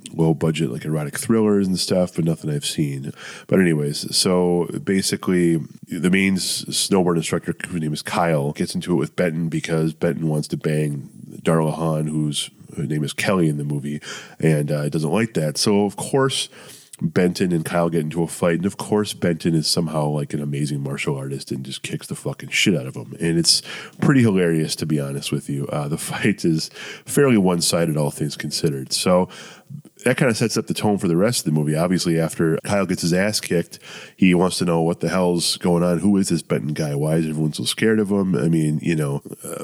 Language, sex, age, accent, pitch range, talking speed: English, male, 30-49, American, 75-90 Hz, 215 wpm